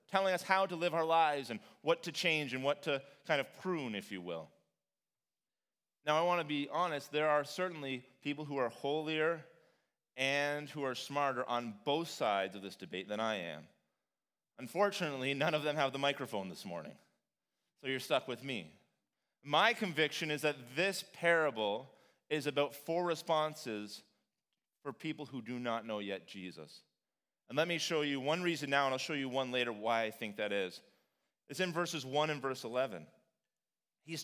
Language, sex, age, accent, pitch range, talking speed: English, male, 30-49, American, 125-165 Hz, 185 wpm